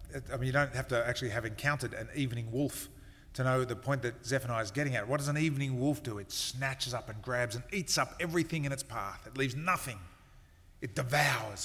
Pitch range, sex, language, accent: 120-155 Hz, male, English, Australian